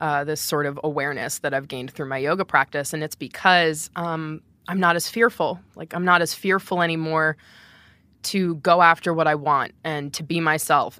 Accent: American